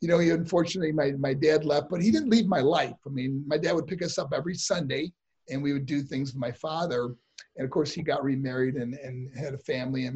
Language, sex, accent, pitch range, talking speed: English, male, American, 130-185 Hz, 255 wpm